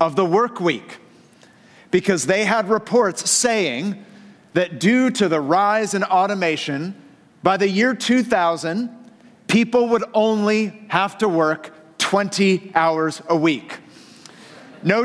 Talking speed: 125 wpm